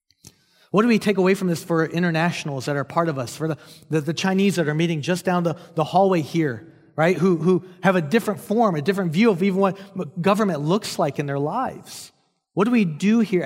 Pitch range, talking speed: 145-190 Hz, 230 wpm